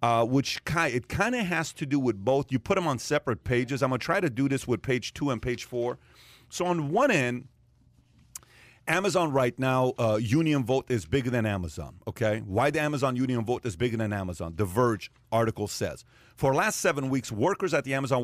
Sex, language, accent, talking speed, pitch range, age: male, English, American, 220 wpm, 120-150 Hz, 40-59